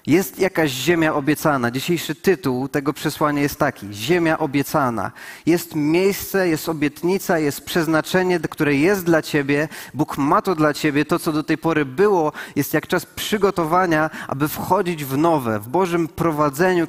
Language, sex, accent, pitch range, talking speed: Polish, male, native, 145-170 Hz, 155 wpm